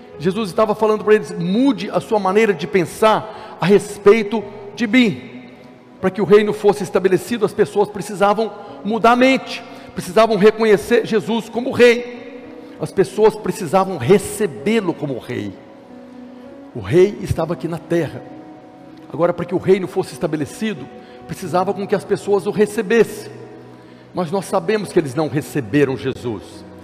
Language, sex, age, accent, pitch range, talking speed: Portuguese, male, 60-79, Brazilian, 165-205 Hz, 150 wpm